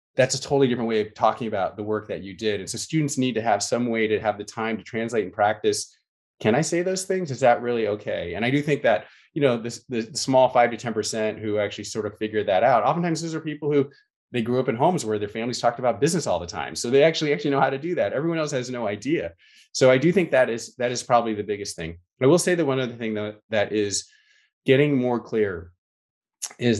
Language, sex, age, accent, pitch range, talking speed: English, male, 20-39, American, 105-130 Hz, 260 wpm